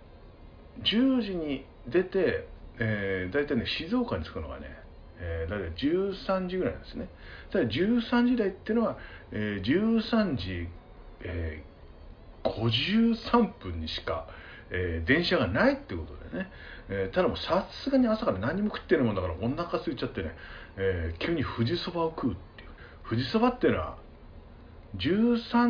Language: Japanese